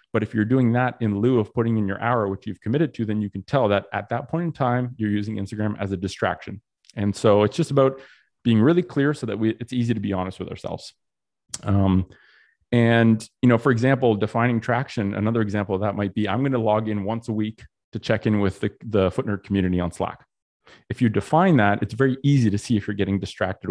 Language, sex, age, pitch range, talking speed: English, male, 30-49, 100-120 Hz, 240 wpm